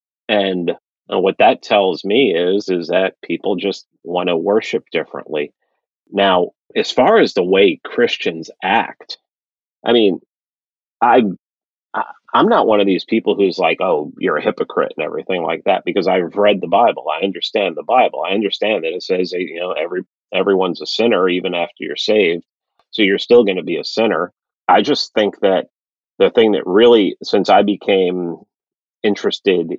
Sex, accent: male, American